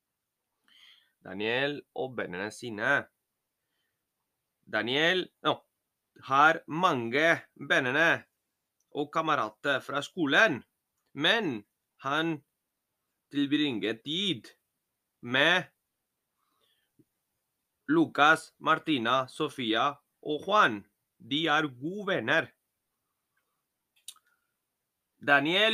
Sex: male